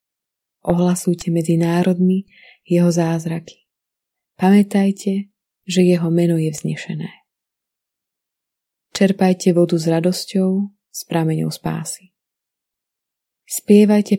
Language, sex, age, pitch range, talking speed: Slovak, female, 20-39, 170-200 Hz, 75 wpm